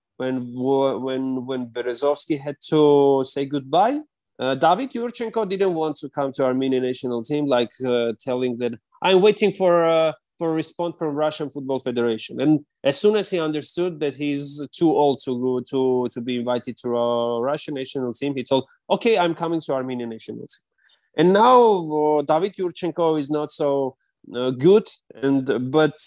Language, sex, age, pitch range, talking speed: English, male, 30-49, 120-150 Hz, 175 wpm